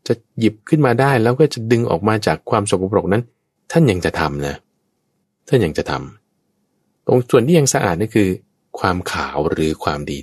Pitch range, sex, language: 80-130 Hz, male, Thai